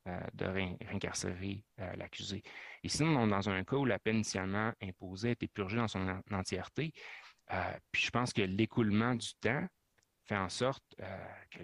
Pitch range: 95-115 Hz